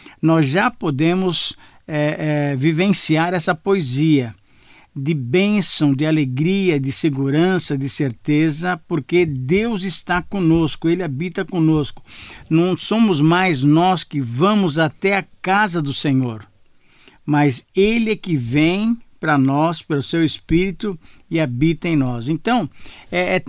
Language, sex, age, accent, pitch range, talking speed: Portuguese, male, 60-79, Brazilian, 145-175 Hz, 125 wpm